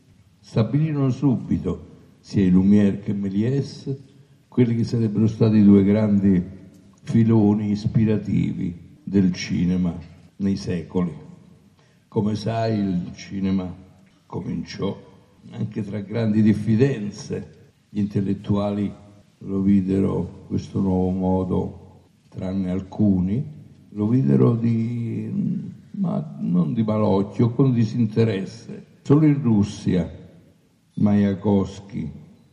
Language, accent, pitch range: Italian, native, 95-115 Hz